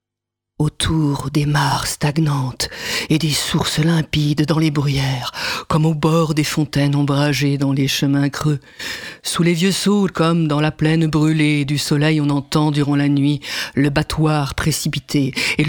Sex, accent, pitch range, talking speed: female, French, 140-165 Hz, 155 wpm